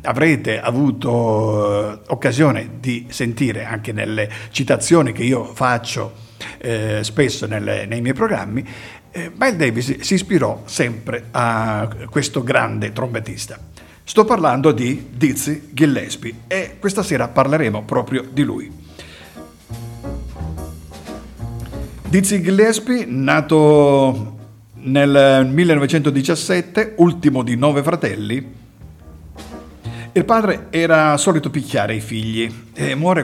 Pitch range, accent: 115-155 Hz, native